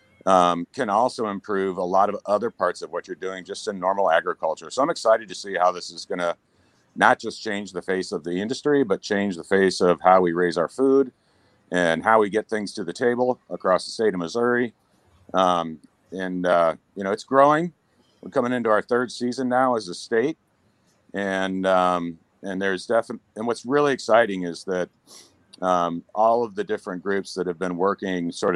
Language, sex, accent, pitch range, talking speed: English, male, American, 90-115 Hz, 205 wpm